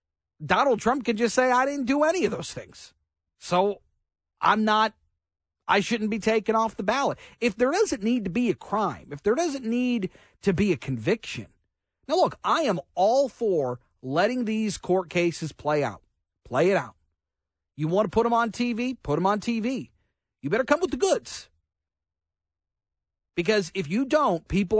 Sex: male